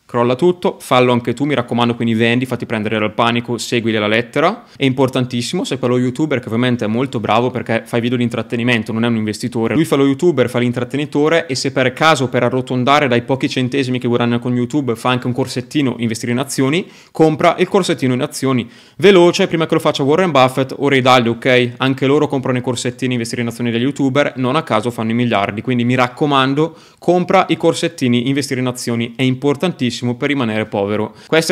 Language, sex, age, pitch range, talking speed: Italian, male, 20-39, 120-150 Hz, 205 wpm